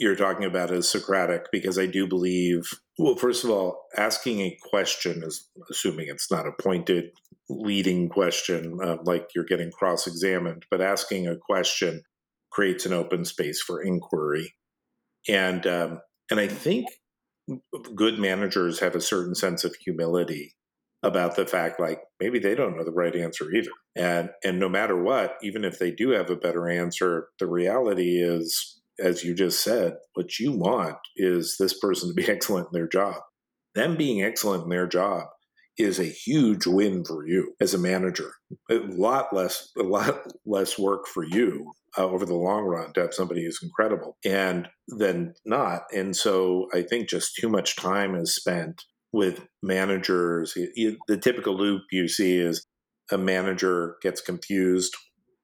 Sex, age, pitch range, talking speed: male, 50-69, 85-95 Hz, 170 wpm